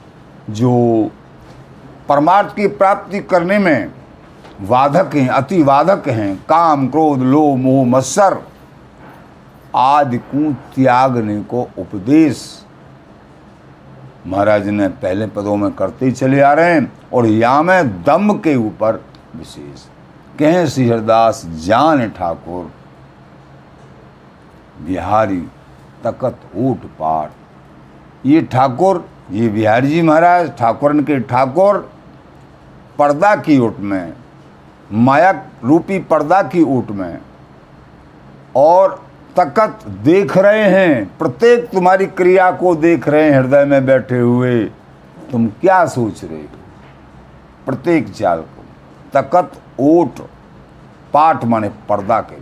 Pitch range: 110-170 Hz